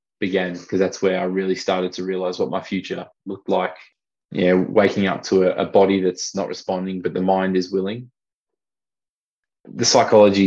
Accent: Australian